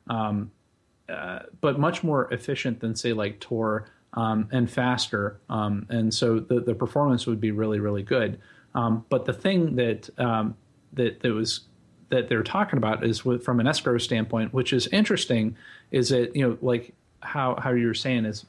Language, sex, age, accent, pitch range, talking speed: English, male, 30-49, American, 110-125 Hz, 180 wpm